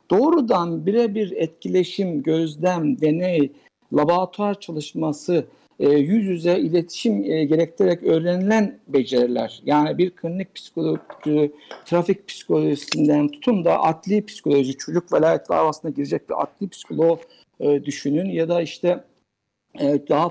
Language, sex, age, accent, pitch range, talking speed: Turkish, male, 60-79, native, 155-220 Hz, 105 wpm